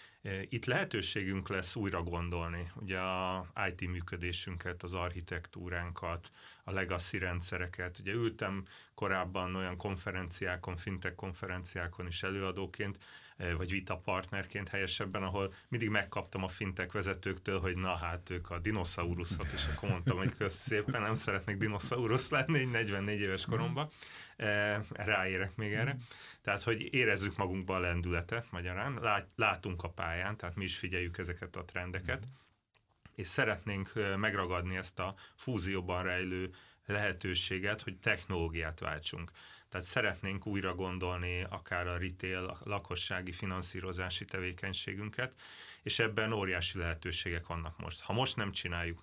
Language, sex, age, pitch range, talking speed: Hungarian, male, 30-49, 90-100 Hz, 125 wpm